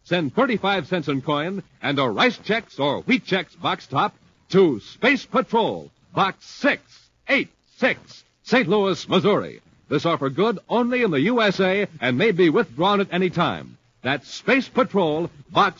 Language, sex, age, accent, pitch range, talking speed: English, male, 60-79, American, 120-175 Hz, 150 wpm